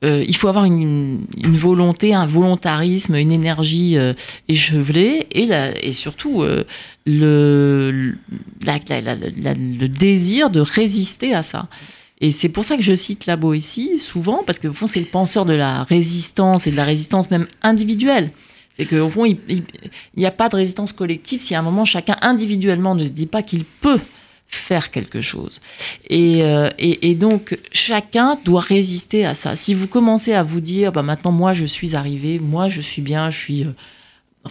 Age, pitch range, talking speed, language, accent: 30-49, 150-195 Hz, 195 wpm, French, French